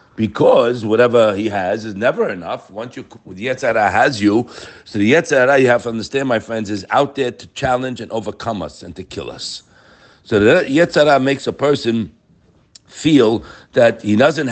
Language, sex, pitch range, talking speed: English, male, 130-220 Hz, 180 wpm